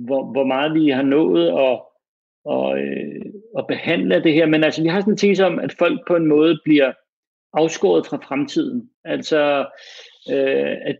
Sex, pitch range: male, 145-195 Hz